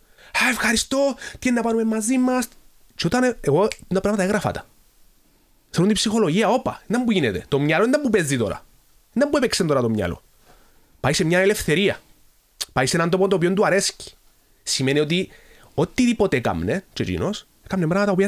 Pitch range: 135-225 Hz